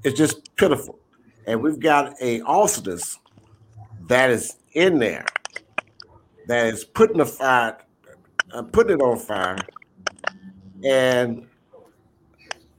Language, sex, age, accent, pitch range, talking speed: English, male, 60-79, American, 115-150 Hz, 110 wpm